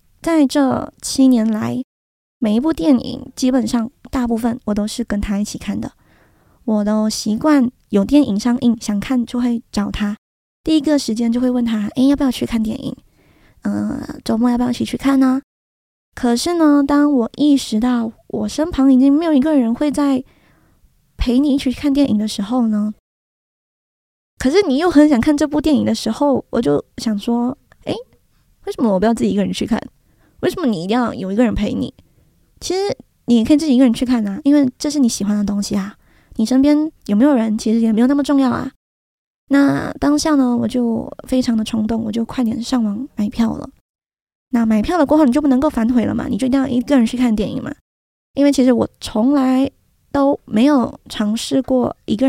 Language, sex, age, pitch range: Chinese, female, 20-39, 225-280 Hz